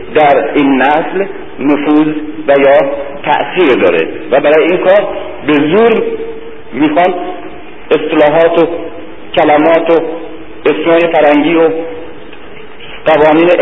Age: 50-69